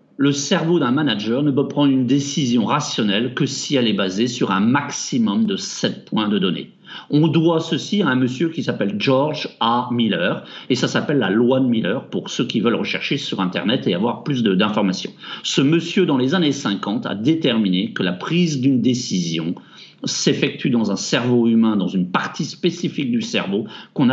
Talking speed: 195 wpm